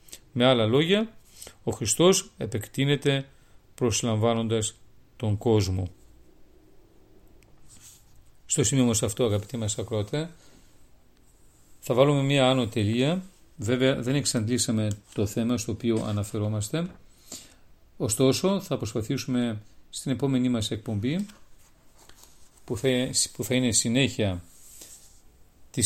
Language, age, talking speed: Greek, 40-59, 95 wpm